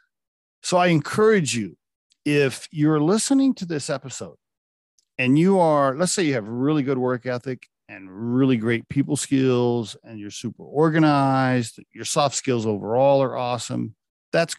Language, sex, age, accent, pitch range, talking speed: English, male, 40-59, American, 110-140 Hz, 150 wpm